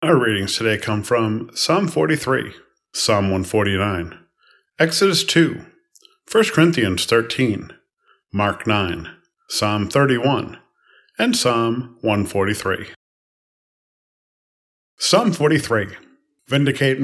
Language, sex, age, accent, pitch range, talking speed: English, male, 40-59, American, 115-155 Hz, 85 wpm